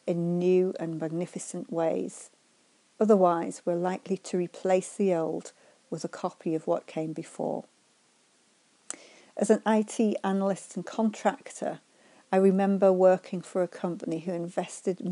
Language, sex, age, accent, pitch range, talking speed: English, female, 50-69, British, 170-200 Hz, 130 wpm